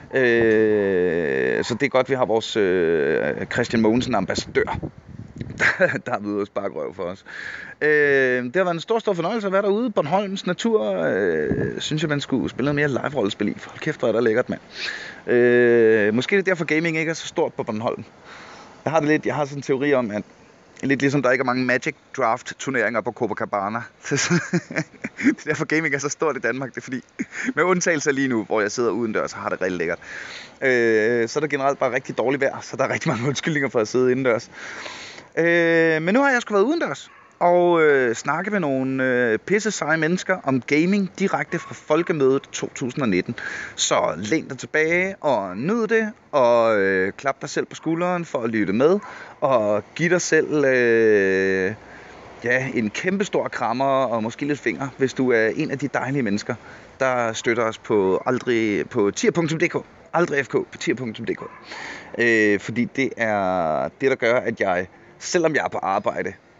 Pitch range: 120-175 Hz